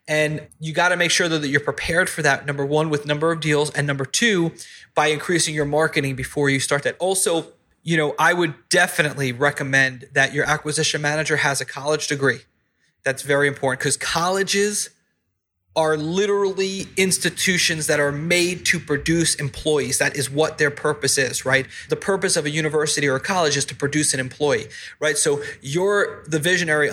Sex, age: male, 30-49